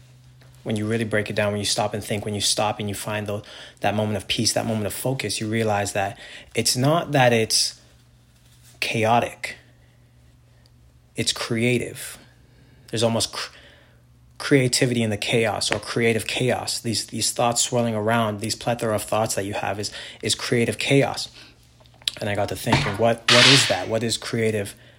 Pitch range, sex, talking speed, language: 105-120 Hz, male, 180 wpm, English